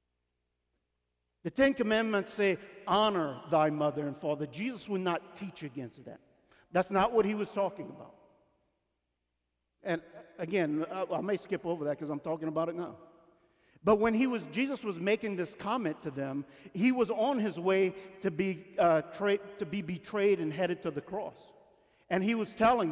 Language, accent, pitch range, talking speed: English, American, 135-215 Hz, 180 wpm